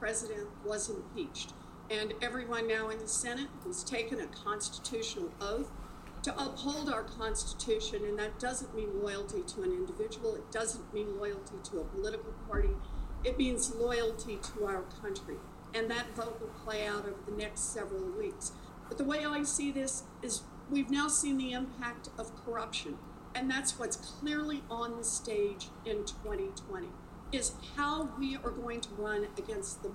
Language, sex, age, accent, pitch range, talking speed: English, female, 50-69, American, 220-295 Hz, 165 wpm